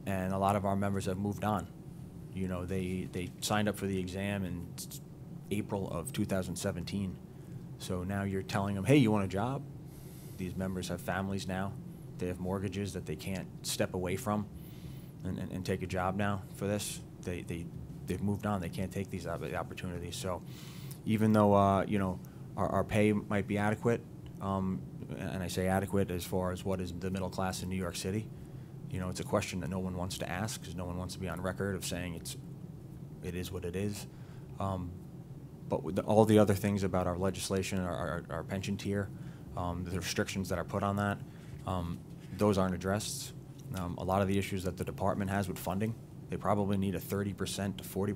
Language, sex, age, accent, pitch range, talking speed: English, male, 20-39, American, 95-105 Hz, 210 wpm